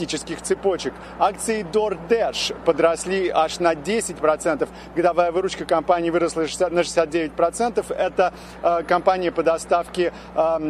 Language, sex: Russian, male